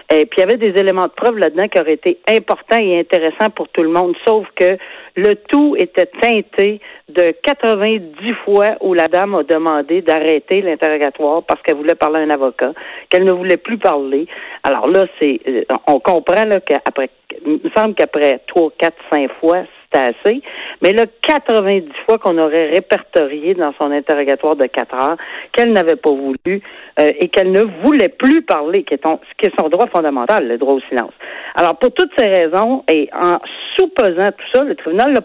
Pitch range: 160-225 Hz